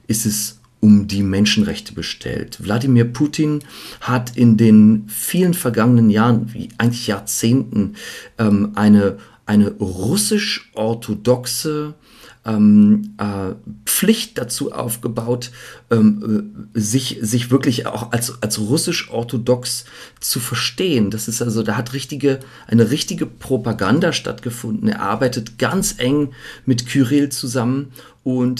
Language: German